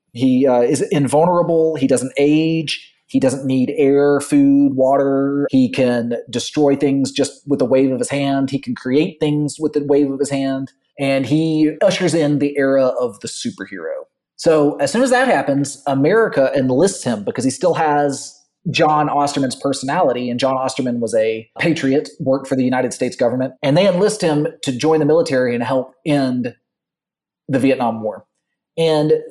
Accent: American